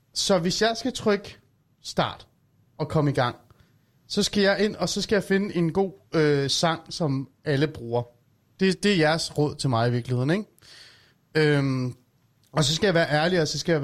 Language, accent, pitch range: Danish, native, 135-175 Hz